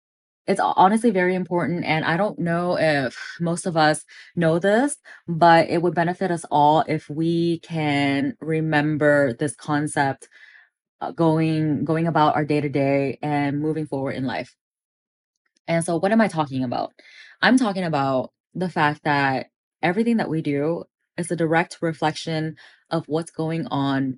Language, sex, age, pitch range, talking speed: English, female, 20-39, 145-180 Hz, 150 wpm